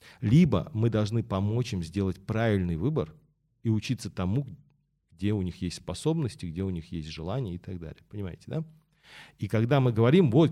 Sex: male